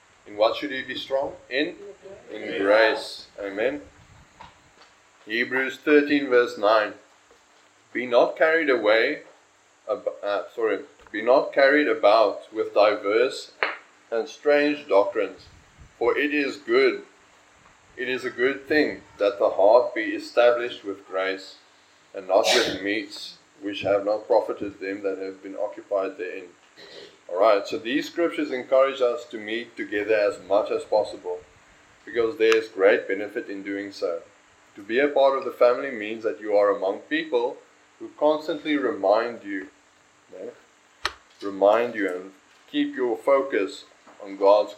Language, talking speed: English, 140 wpm